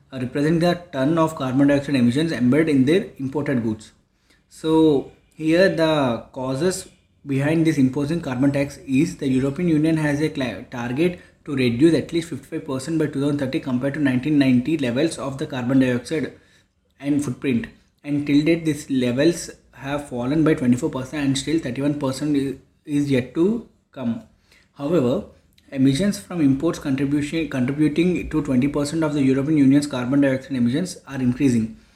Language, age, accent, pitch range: English, 20-39, Indian, 130-155 Hz